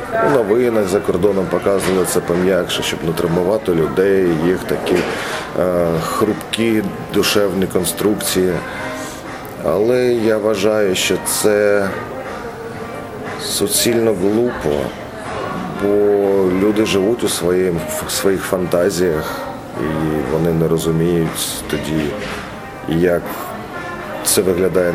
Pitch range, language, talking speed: 90-115 Hz, Ukrainian, 90 wpm